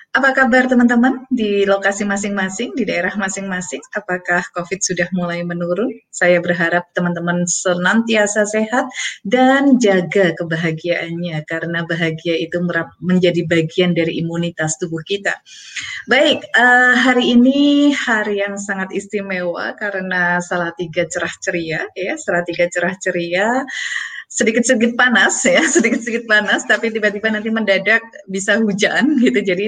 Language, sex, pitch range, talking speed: Indonesian, female, 175-235 Hz, 120 wpm